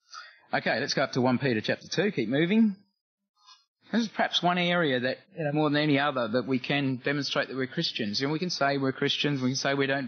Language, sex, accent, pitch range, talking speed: English, male, Australian, 110-150 Hz, 255 wpm